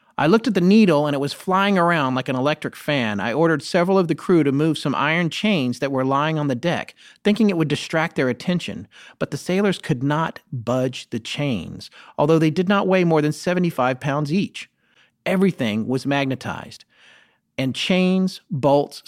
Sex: male